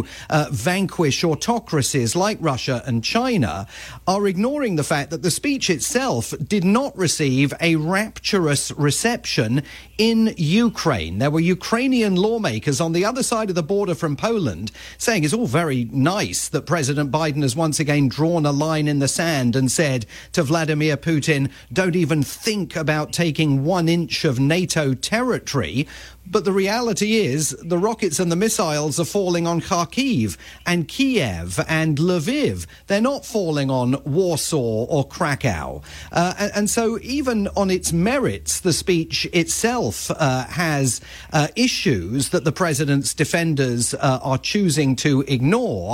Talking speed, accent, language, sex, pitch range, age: 150 wpm, British, English, male, 140-185 Hz, 40-59